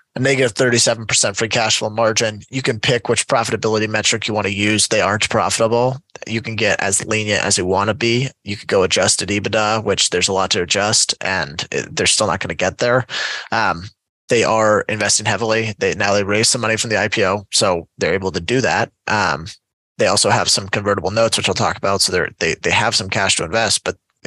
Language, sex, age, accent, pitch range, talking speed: English, male, 20-39, American, 105-120 Hz, 220 wpm